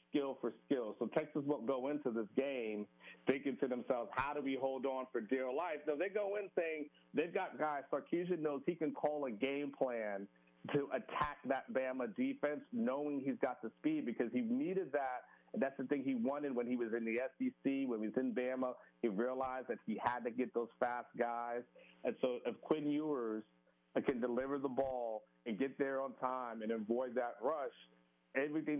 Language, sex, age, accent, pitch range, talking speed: English, male, 50-69, American, 120-145 Hz, 200 wpm